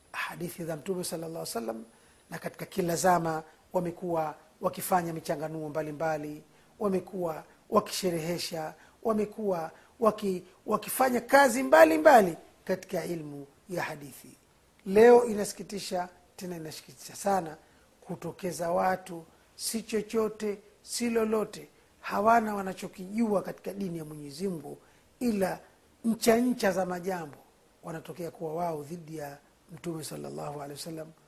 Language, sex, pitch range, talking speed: Swahili, male, 165-205 Hz, 105 wpm